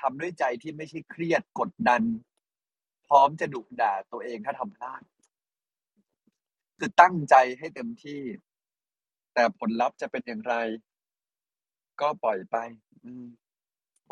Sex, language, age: male, Thai, 30-49